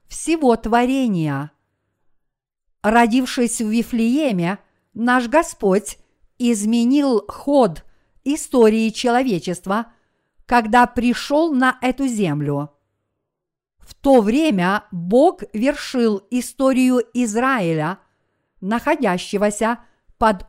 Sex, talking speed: female, 75 wpm